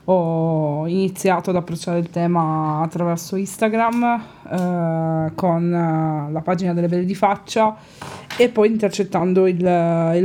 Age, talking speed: 20-39, 125 wpm